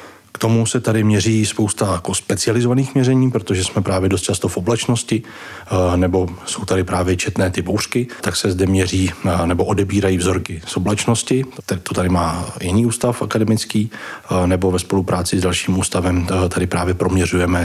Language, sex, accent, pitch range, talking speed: Czech, male, native, 90-105 Hz, 160 wpm